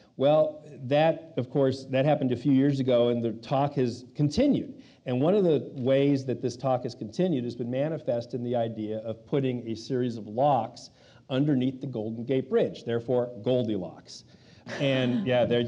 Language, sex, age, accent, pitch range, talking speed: English, male, 50-69, American, 120-145 Hz, 180 wpm